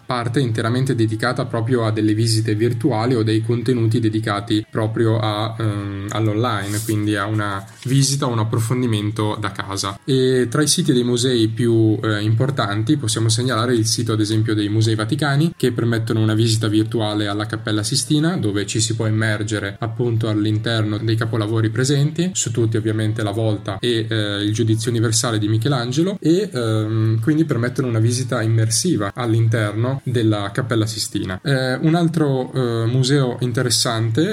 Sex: male